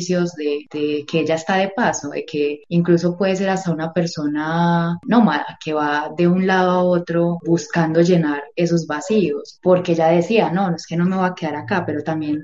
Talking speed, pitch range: 205 wpm, 150-175 Hz